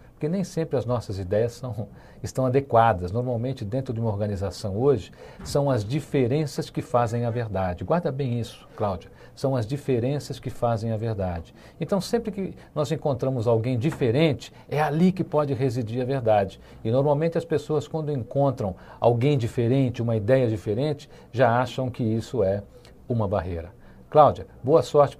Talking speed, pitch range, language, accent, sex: 160 wpm, 110-140 Hz, Portuguese, Brazilian, male